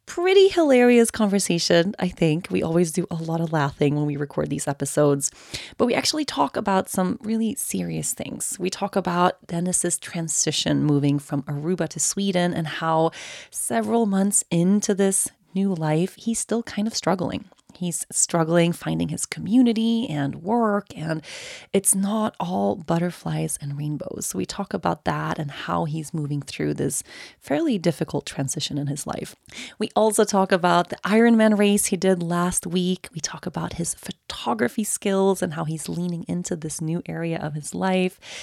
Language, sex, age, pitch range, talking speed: English, female, 30-49, 160-210 Hz, 170 wpm